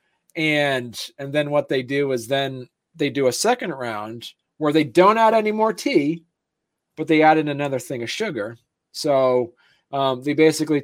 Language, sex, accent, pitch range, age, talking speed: English, male, American, 130-170 Hz, 40-59, 175 wpm